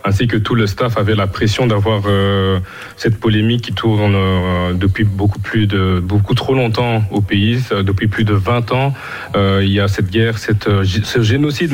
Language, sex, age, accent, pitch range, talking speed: French, male, 30-49, French, 100-115 Hz, 200 wpm